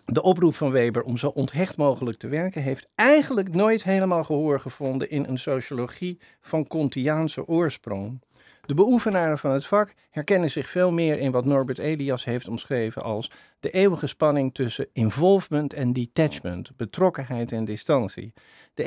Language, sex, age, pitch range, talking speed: Dutch, male, 50-69, 125-170 Hz, 155 wpm